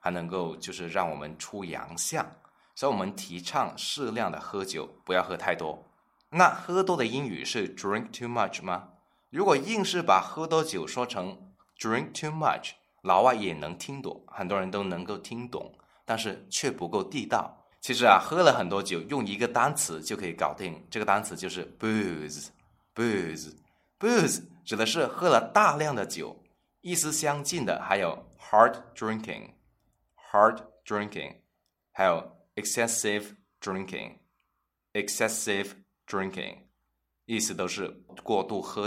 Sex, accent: male, native